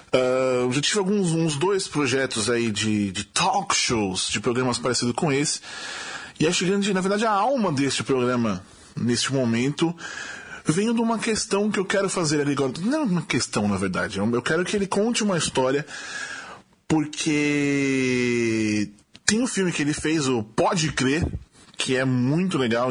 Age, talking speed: 20-39, 170 wpm